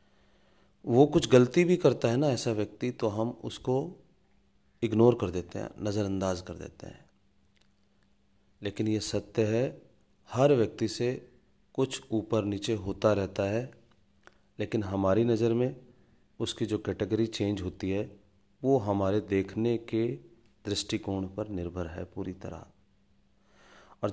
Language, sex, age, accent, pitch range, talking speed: Hindi, male, 30-49, native, 100-115 Hz, 135 wpm